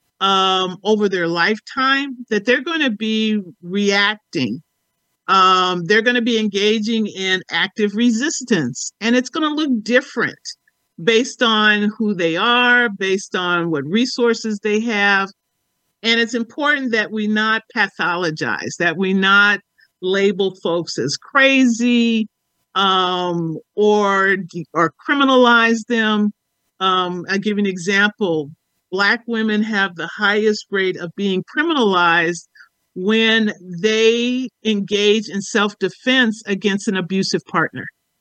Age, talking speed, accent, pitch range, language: 50-69, 120 wpm, American, 190-230 Hz, English